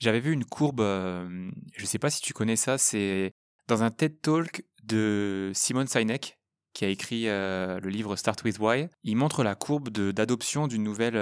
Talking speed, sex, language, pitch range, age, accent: 205 wpm, male, French, 105-130 Hz, 20-39, French